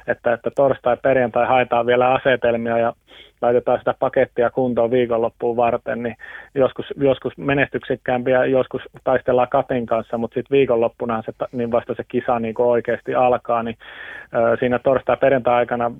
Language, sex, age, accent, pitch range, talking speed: Finnish, male, 30-49, native, 115-125 Hz, 145 wpm